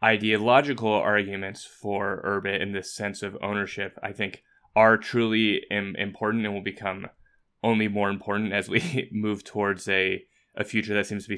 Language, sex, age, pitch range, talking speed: English, male, 20-39, 95-105 Hz, 170 wpm